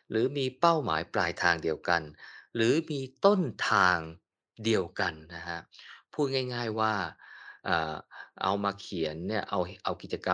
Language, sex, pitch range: Thai, male, 85-120 Hz